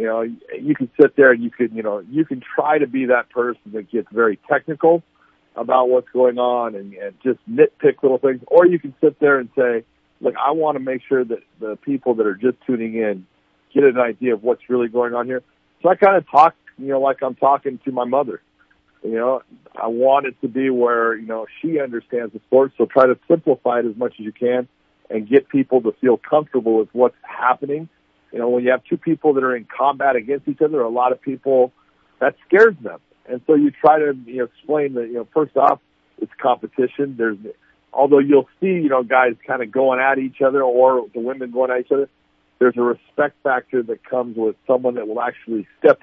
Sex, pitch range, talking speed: male, 120-140 Hz, 230 wpm